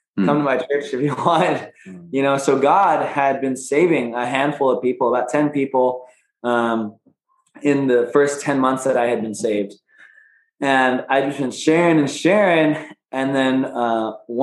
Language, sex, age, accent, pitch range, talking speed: English, male, 20-39, American, 120-140 Hz, 175 wpm